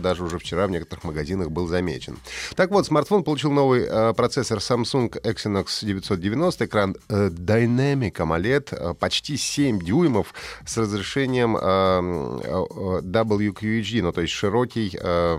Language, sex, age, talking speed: Russian, male, 30-49, 135 wpm